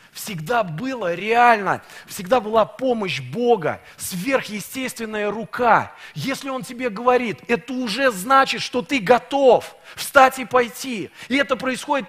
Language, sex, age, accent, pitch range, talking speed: Russian, male, 30-49, native, 220-270 Hz, 125 wpm